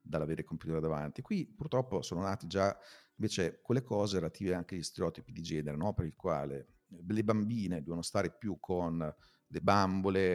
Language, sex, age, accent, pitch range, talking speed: Italian, male, 40-59, native, 85-105 Hz, 170 wpm